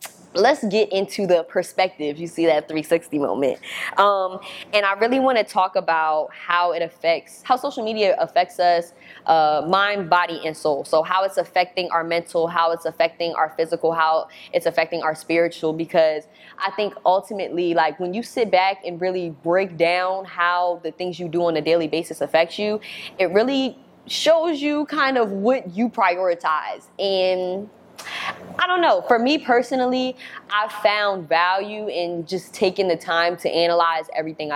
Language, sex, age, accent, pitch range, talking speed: English, female, 20-39, American, 165-210 Hz, 170 wpm